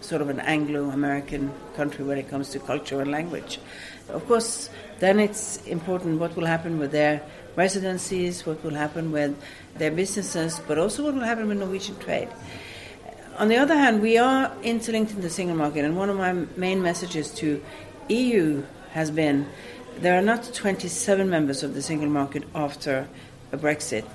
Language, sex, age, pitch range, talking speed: English, female, 60-79, 145-180 Hz, 175 wpm